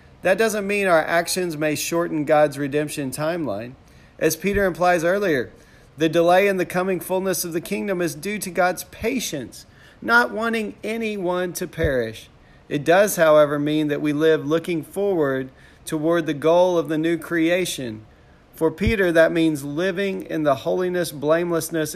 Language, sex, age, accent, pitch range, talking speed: English, male, 40-59, American, 145-180 Hz, 160 wpm